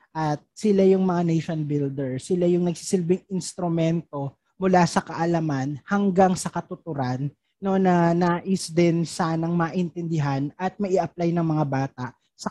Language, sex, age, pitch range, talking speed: Filipino, male, 20-39, 165-205 Hz, 135 wpm